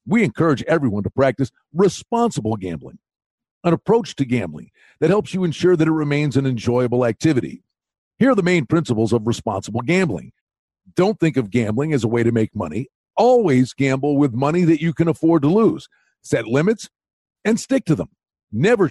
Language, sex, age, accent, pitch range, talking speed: English, male, 50-69, American, 120-180 Hz, 180 wpm